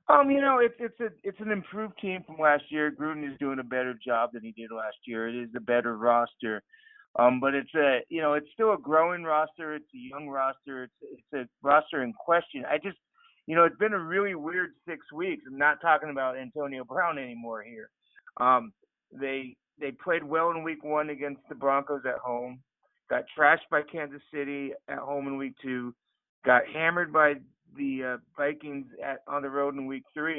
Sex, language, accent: male, English, American